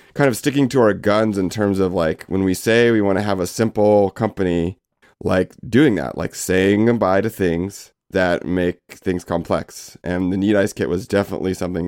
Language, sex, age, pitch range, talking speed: English, male, 30-49, 95-120 Hz, 200 wpm